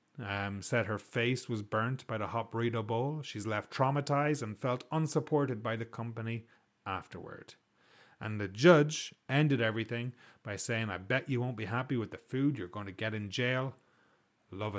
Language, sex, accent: English, male, Irish